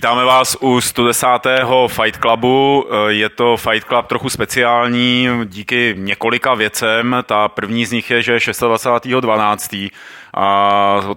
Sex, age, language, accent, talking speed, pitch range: male, 30-49, Czech, native, 135 wpm, 110-125 Hz